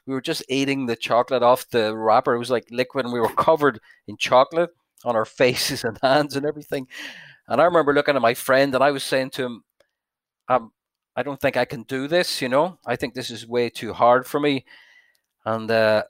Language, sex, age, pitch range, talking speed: English, male, 40-59, 120-145 Hz, 220 wpm